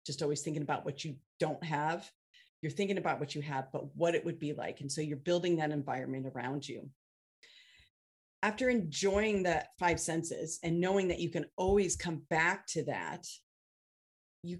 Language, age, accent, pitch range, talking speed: English, 30-49, American, 145-175 Hz, 180 wpm